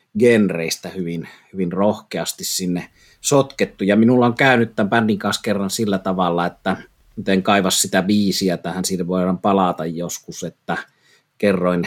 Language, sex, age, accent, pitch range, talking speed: Finnish, male, 30-49, native, 90-100 Hz, 140 wpm